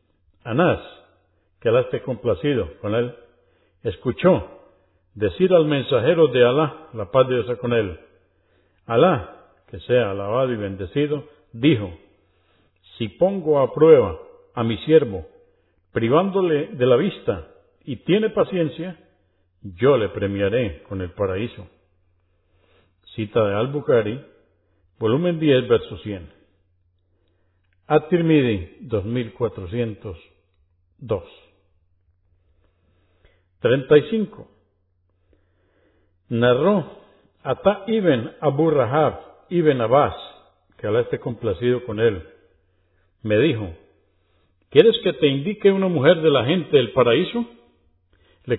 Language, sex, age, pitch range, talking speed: Spanish, male, 50-69, 90-155 Hz, 105 wpm